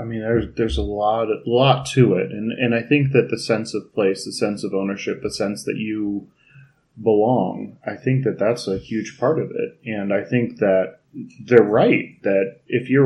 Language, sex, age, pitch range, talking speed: English, male, 20-39, 105-135 Hz, 210 wpm